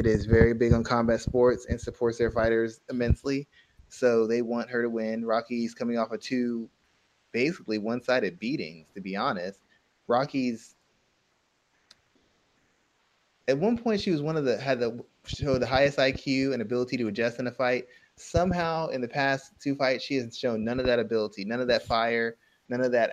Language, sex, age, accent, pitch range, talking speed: English, male, 20-39, American, 115-135 Hz, 185 wpm